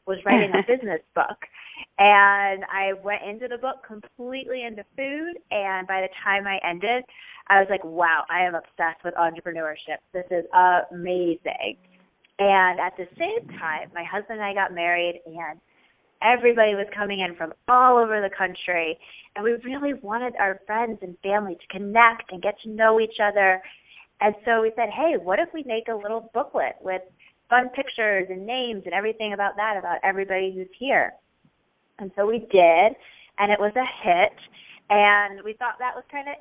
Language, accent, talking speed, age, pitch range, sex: English, American, 180 wpm, 20-39, 180-225 Hz, female